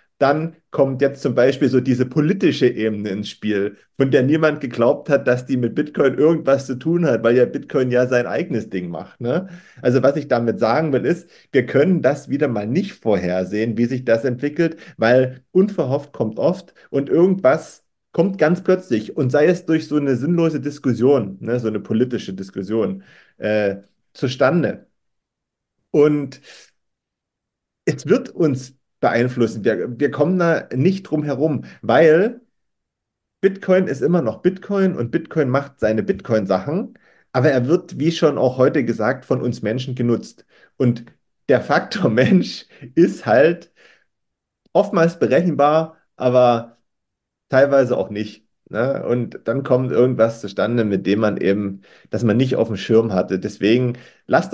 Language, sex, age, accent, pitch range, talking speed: German, male, 40-59, German, 115-155 Hz, 150 wpm